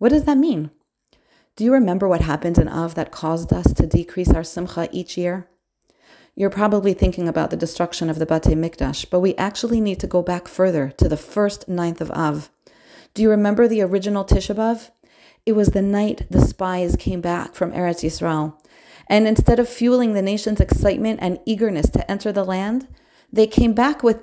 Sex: female